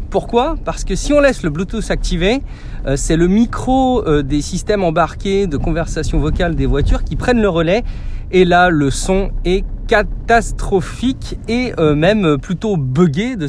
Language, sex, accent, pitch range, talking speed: French, male, French, 140-205 Hz, 155 wpm